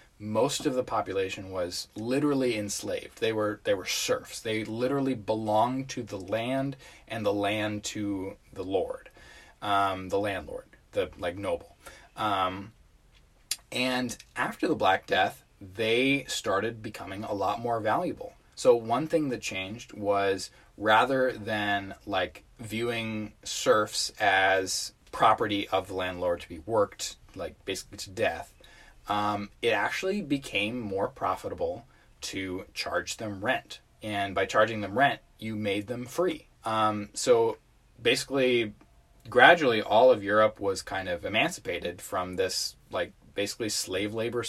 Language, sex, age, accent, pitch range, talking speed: English, male, 20-39, American, 100-130 Hz, 140 wpm